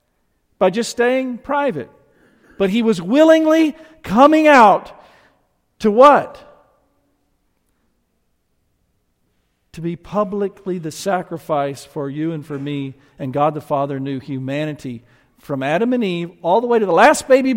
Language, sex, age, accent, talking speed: English, male, 50-69, American, 135 wpm